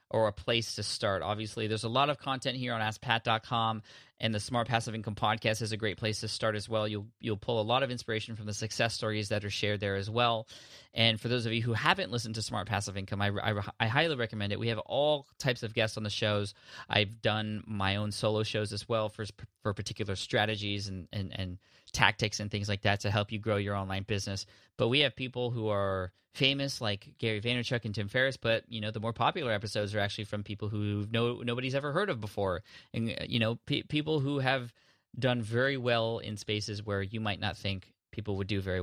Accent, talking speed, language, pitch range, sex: American, 235 wpm, English, 105-120 Hz, male